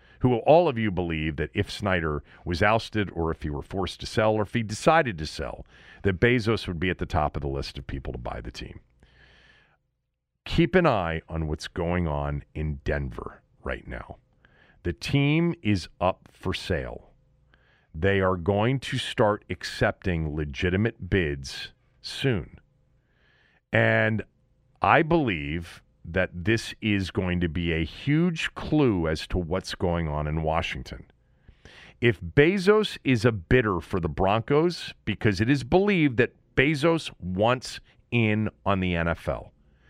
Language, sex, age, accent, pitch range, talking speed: English, male, 40-59, American, 85-125 Hz, 155 wpm